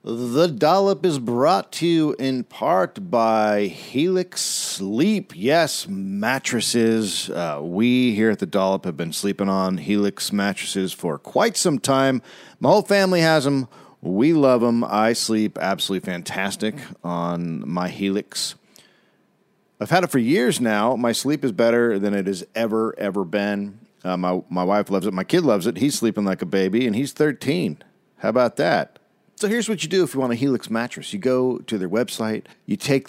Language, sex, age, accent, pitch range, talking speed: English, male, 40-59, American, 105-160 Hz, 180 wpm